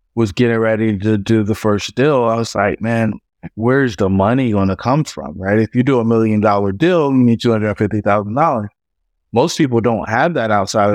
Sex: male